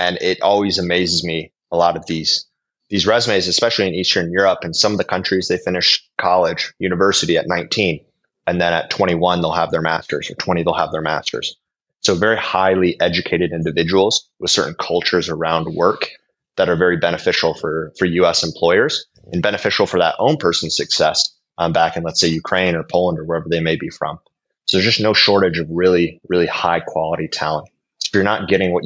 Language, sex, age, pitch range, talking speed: English, male, 30-49, 85-95 Hz, 200 wpm